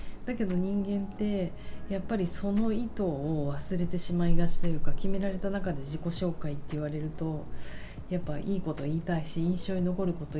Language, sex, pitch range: Japanese, female, 150-195 Hz